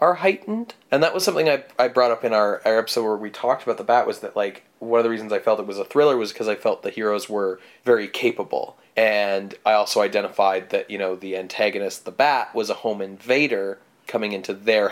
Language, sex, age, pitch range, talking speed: English, male, 30-49, 110-135 Hz, 240 wpm